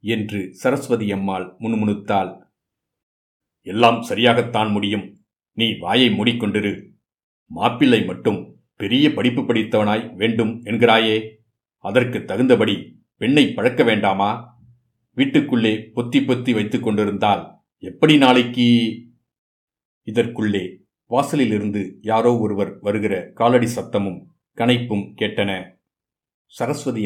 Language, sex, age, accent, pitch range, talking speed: Tamil, male, 50-69, native, 105-120 Hz, 75 wpm